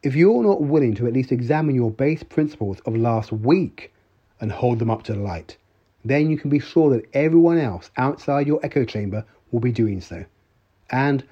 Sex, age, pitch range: male, 40-59, 100-130 Hz